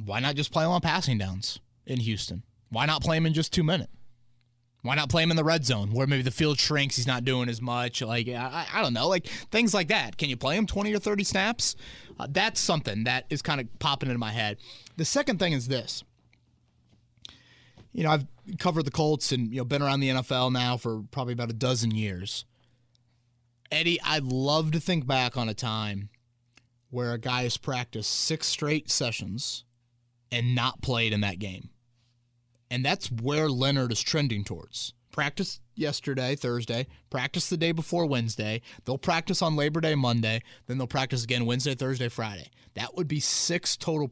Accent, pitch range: American, 120-150 Hz